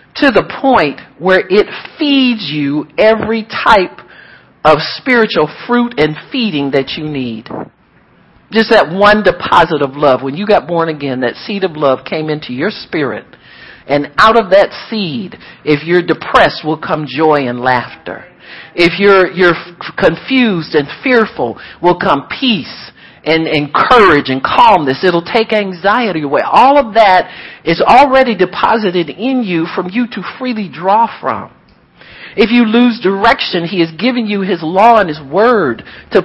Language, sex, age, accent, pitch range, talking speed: English, male, 50-69, American, 160-250 Hz, 155 wpm